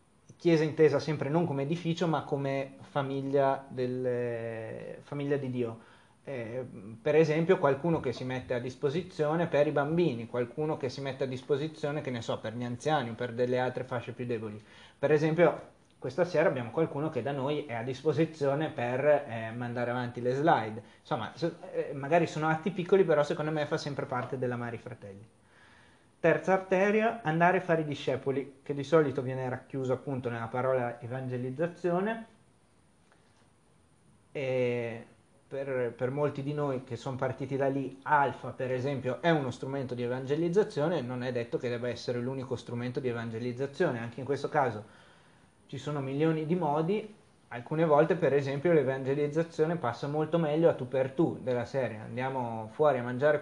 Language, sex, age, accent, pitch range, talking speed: Italian, male, 30-49, native, 125-155 Hz, 165 wpm